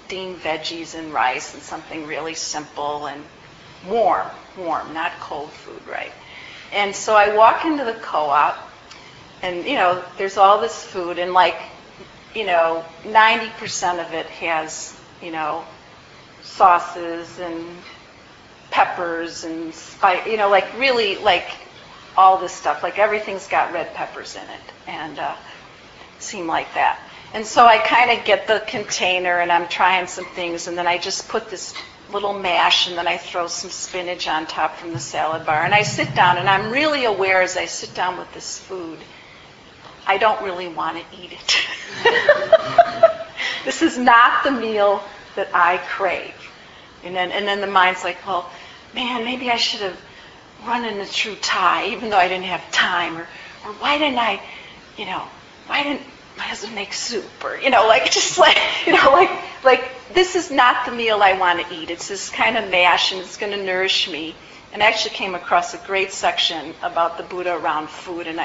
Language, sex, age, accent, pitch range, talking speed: English, female, 40-59, American, 175-220 Hz, 180 wpm